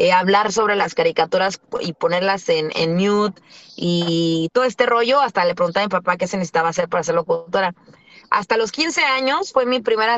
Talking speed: 200 wpm